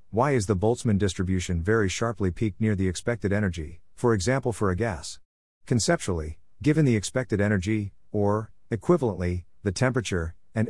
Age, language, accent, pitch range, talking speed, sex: 50-69, English, American, 90-115 Hz, 150 wpm, male